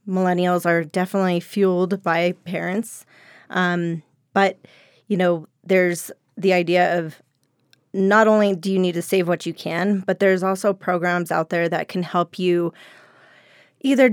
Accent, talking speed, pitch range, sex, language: American, 150 wpm, 170-195 Hz, female, English